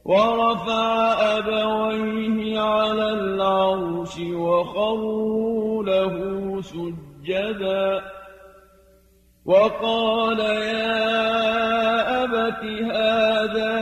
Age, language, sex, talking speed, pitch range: 40-59, Arabic, male, 45 wpm, 190-220 Hz